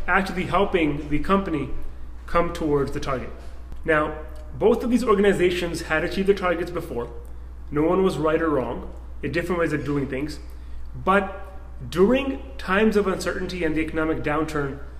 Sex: male